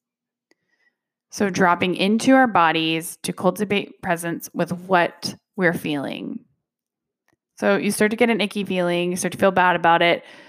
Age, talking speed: 20-39, 155 wpm